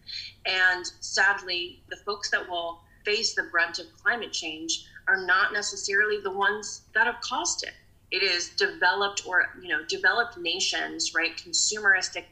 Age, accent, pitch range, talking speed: 30-49, American, 155-205 Hz, 150 wpm